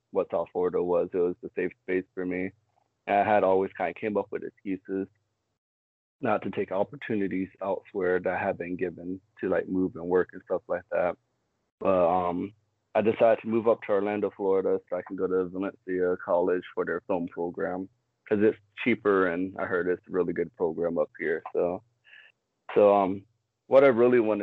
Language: English